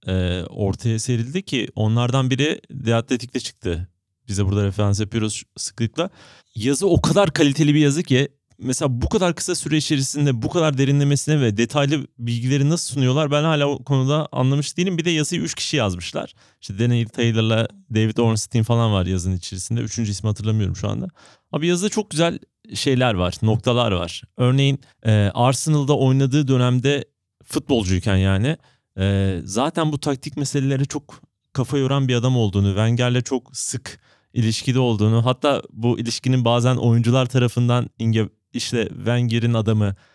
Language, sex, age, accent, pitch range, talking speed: Turkish, male, 30-49, native, 110-145 Hz, 150 wpm